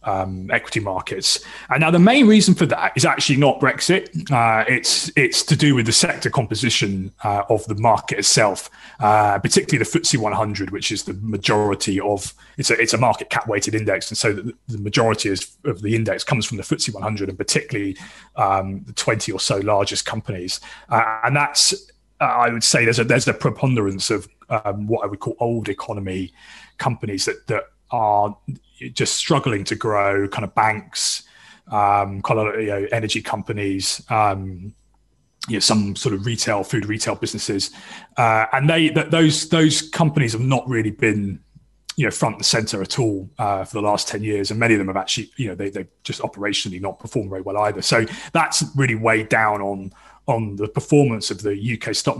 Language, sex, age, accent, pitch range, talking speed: English, male, 30-49, British, 100-130 Hz, 195 wpm